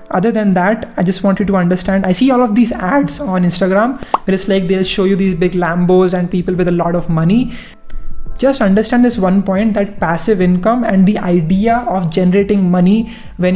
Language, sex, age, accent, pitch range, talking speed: English, male, 20-39, Indian, 180-210 Hz, 210 wpm